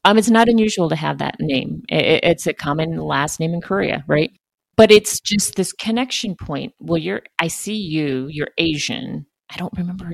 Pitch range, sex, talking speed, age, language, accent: 170-235 Hz, female, 190 wpm, 40-59, English, American